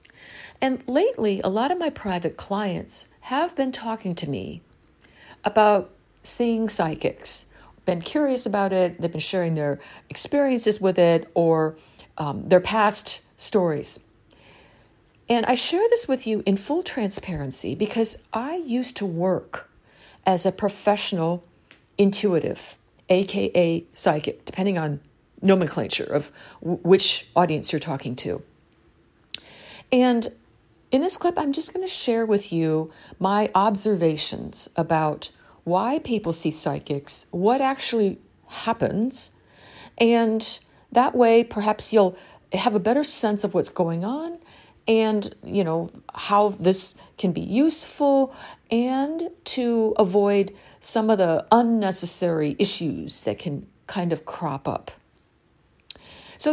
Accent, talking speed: American, 125 wpm